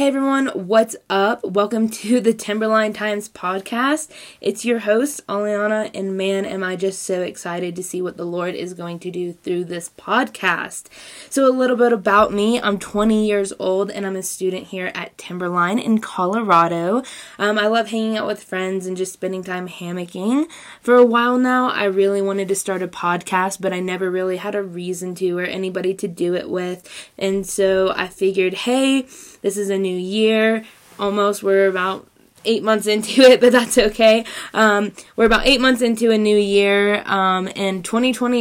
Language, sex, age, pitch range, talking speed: English, female, 10-29, 185-220 Hz, 185 wpm